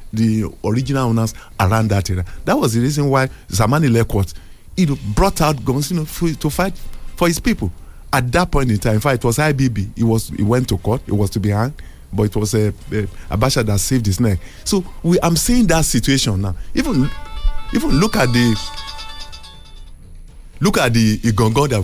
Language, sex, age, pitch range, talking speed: English, male, 50-69, 100-140 Hz, 200 wpm